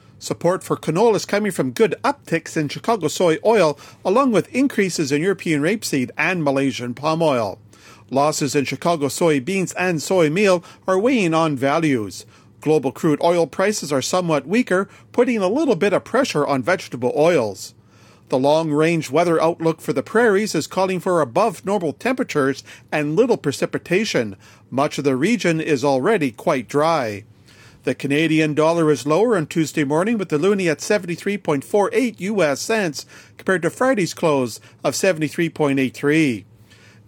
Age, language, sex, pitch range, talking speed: 40-59, English, male, 140-190 Hz, 150 wpm